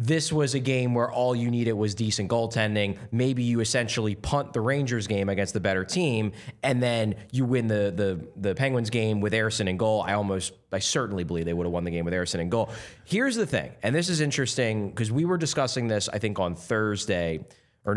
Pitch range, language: 95-125 Hz, English